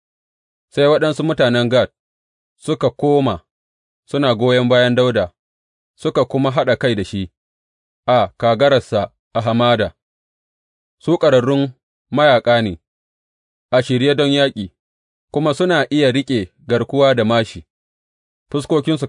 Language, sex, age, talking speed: English, male, 30-49, 110 wpm